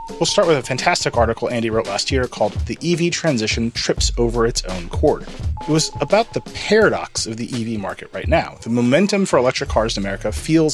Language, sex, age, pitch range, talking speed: English, male, 30-49, 110-155 Hz, 210 wpm